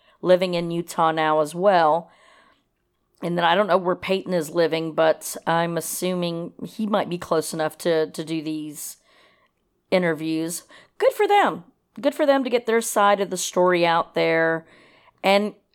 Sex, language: female, English